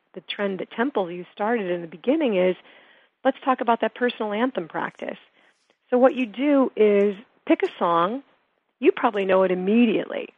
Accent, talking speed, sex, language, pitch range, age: American, 175 wpm, female, English, 185-250 Hz, 40-59